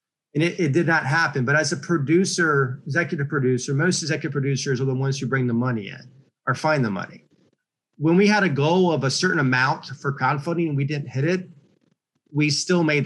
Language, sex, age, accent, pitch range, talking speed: English, male, 40-59, American, 135-165 Hz, 210 wpm